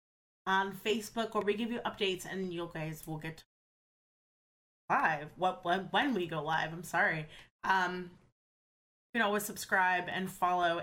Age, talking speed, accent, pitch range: 20-39, 150 wpm, American, 165-200 Hz